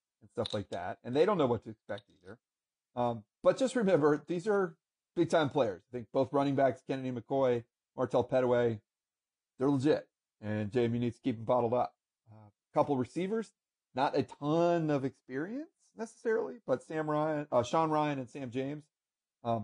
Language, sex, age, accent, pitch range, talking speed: English, male, 40-59, American, 115-150 Hz, 180 wpm